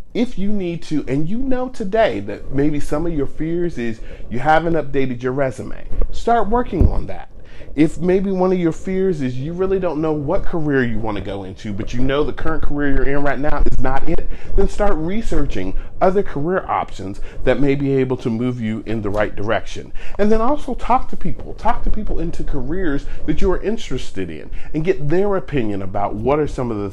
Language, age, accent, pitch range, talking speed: English, 40-59, American, 110-180 Hz, 215 wpm